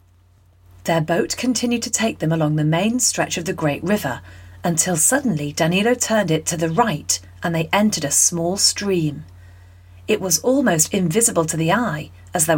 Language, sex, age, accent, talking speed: English, female, 40-59, British, 175 wpm